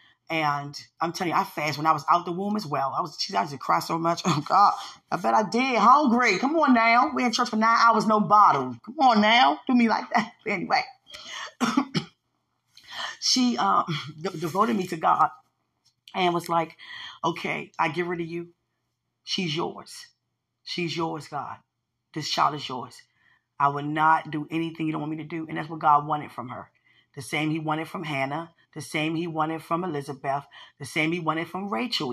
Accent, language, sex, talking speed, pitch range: American, English, female, 205 wpm, 145-175 Hz